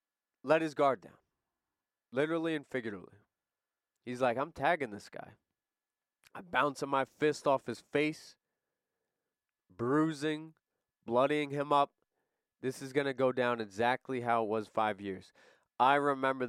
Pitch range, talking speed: 125-165 Hz, 140 wpm